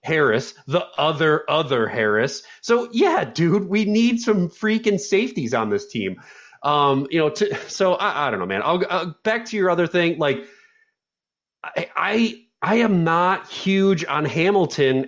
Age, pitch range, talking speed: 30-49, 145-195 Hz, 165 wpm